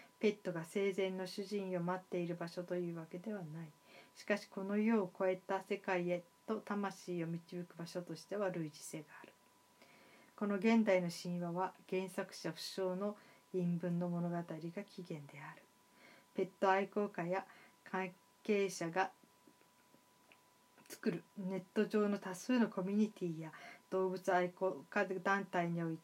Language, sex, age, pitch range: Japanese, female, 40-59, 180-205 Hz